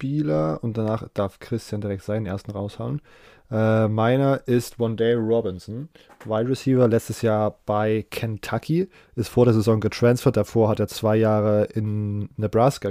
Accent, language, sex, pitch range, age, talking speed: German, German, male, 105-120 Hz, 20-39, 150 wpm